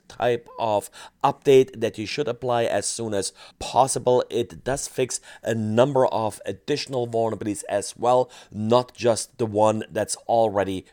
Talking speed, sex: 150 wpm, male